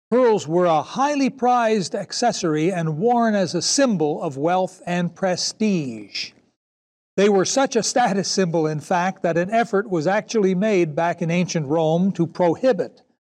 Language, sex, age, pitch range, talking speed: English, male, 60-79, 170-225 Hz, 160 wpm